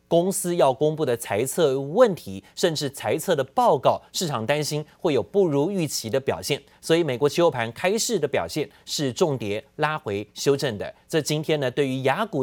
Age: 30-49